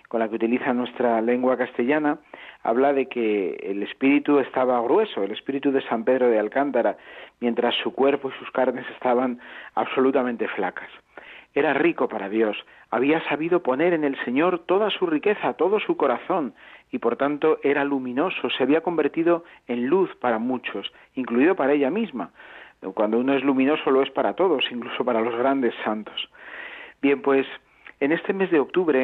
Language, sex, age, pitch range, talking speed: Spanish, male, 40-59, 120-150 Hz, 170 wpm